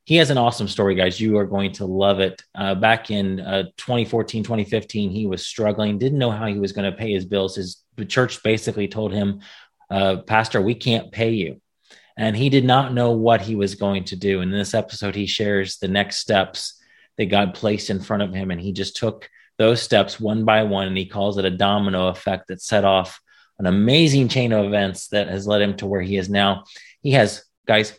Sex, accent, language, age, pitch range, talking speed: male, American, English, 30-49, 100-110 Hz, 225 wpm